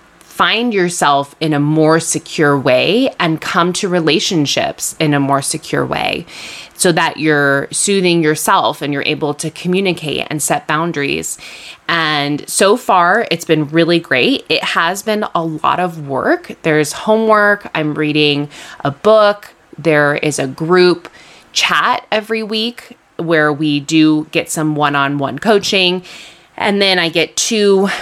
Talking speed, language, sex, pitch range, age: 145 wpm, English, female, 145-185 Hz, 20-39